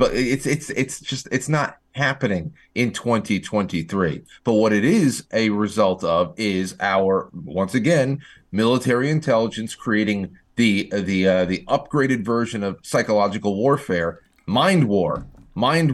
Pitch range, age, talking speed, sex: 105-135 Hz, 30-49, 135 wpm, male